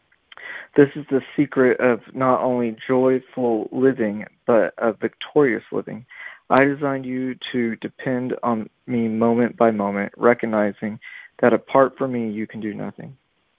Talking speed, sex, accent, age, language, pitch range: 140 wpm, male, American, 40-59, English, 115-135 Hz